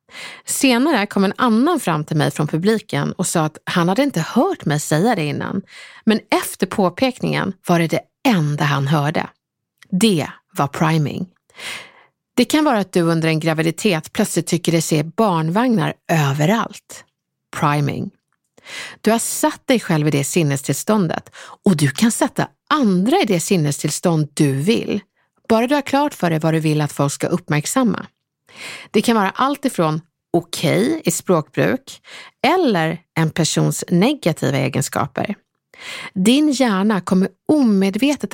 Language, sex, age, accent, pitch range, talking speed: Swedish, female, 50-69, native, 160-230 Hz, 150 wpm